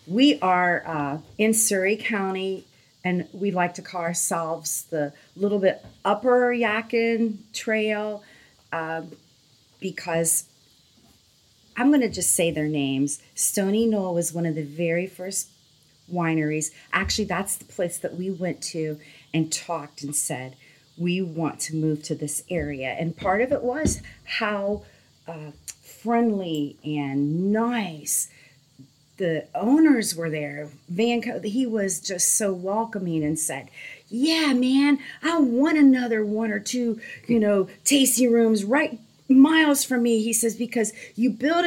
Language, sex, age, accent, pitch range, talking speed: English, female, 40-59, American, 160-235 Hz, 140 wpm